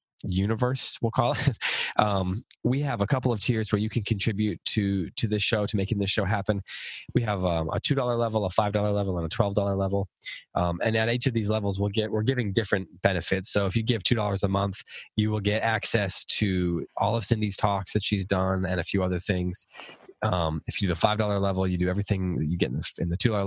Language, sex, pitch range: English, male, 95-115 Hz